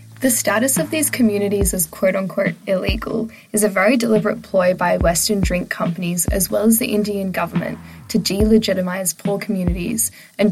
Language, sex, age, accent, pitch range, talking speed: English, female, 10-29, Australian, 190-220 Hz, 160 wpm